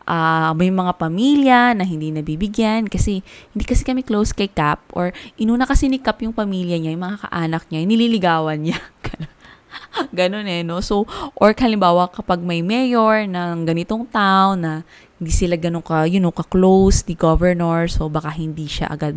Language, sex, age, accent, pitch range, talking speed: Filipino, female, 20-39, native, 160-210 Hz, 170 wpm